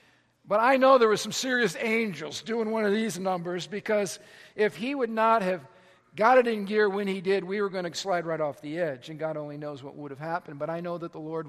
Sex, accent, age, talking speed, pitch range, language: male, American, 50-69, 255 wpm, 160-200 Hz, English